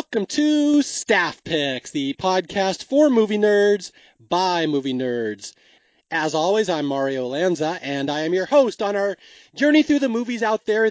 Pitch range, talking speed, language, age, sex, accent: 160-210 Hz, 165 wpm, English, 30-49, male, American